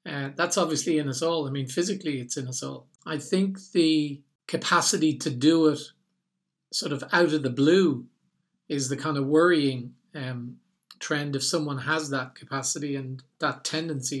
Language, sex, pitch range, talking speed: English, male, 135-155 Hz, 175 wpm